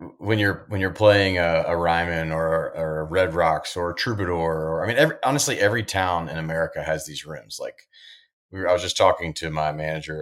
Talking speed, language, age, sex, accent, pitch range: 225 wpm, English, 30-49, male, American, 80-95 Hz